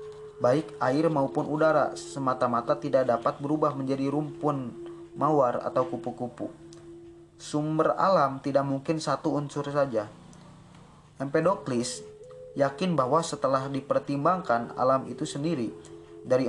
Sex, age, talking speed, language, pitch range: male, 20-39, 105 wpm, Indonesian, 130-175 Hz